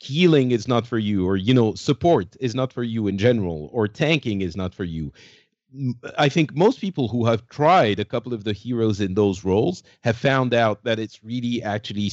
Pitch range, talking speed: 100-130 Hz, 215 wpm